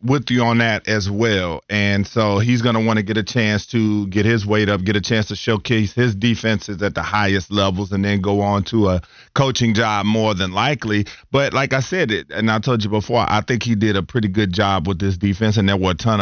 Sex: male